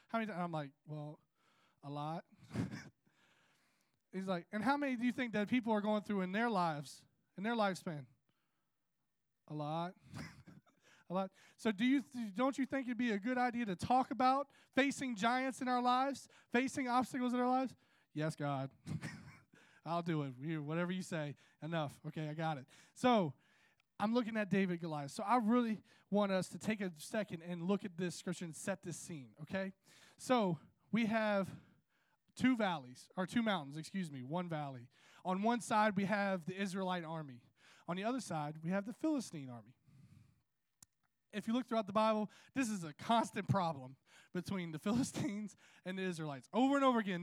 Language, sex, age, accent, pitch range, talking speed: English, male, 20-39, American, 155-225 Hz, 185 wpm